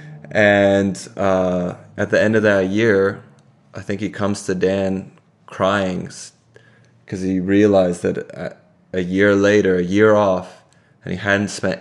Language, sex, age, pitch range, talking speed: English, male, 20-39, 95-105 Hz, 145 wpm